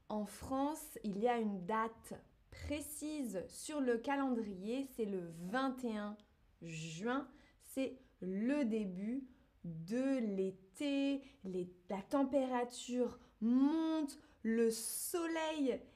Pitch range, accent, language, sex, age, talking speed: 215-280 Hz, French, French, female, 20-39, 95 wpm